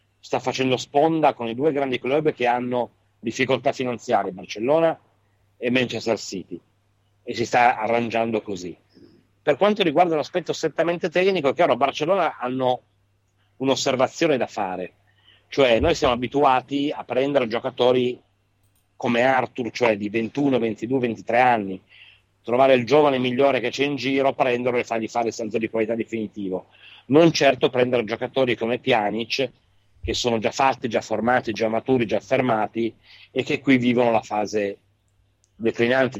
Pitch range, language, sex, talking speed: 105-130 Hz, Italian, male, 150 wpm